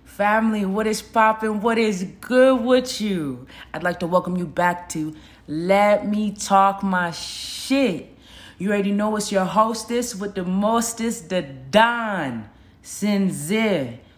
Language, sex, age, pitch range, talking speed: English, female, 20-39, 140-195 Hz, 140 wpm